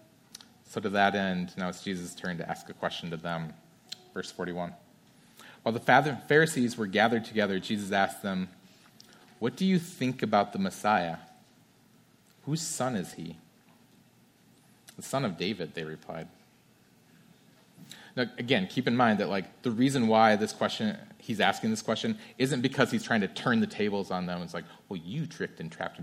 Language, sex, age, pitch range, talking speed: English, male, 30-49, 90-135 Hz, 175 wpm